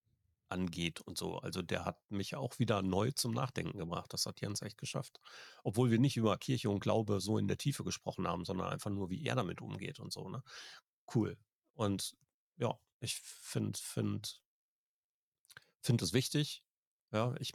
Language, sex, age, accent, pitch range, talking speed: German, male, 40-59, German, 95-120 Hz, 165 wpm